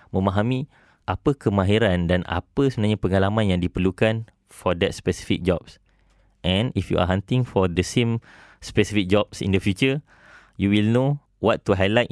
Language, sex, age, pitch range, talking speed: English, male, 20-39, 95-110 Hz, 160 wpm